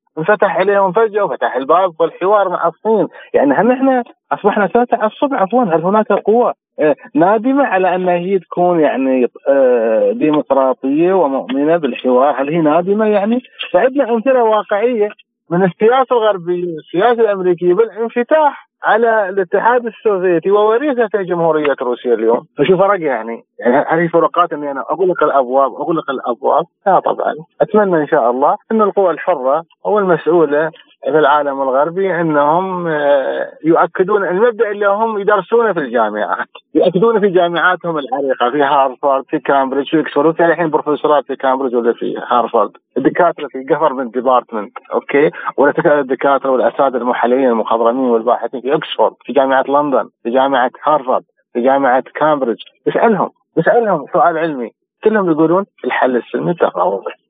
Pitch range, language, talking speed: 145-210 Hz, Arabic, 135 wpm